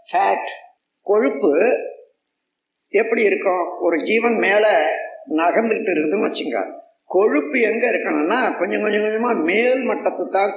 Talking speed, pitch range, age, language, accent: 95 wpm, 230-360 Hz, 50-69, Tamil, native